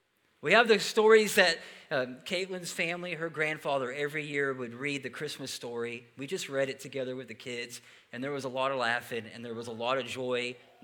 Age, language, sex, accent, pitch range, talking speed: 40-59, English, male, American, 135-190 Hz, 220 wpm